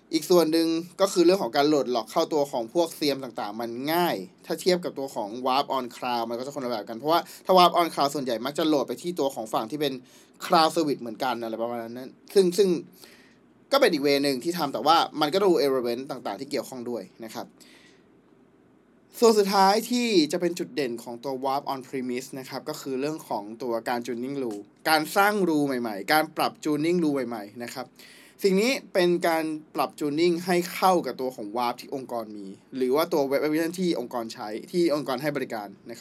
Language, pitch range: Thai, 130-180 Hz